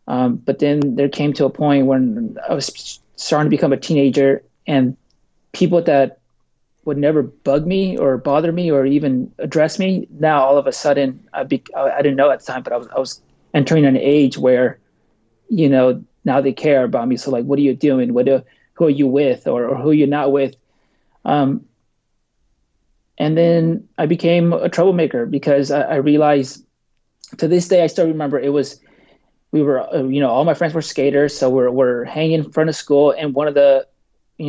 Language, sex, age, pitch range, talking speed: English, male, 30-49, 135-155 Hz, 205 wpm